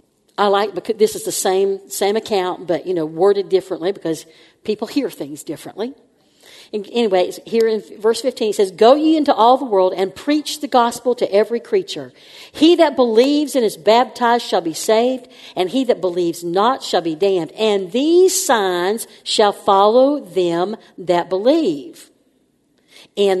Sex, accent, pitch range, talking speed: female, American, 185-255 Hz, 165 wpm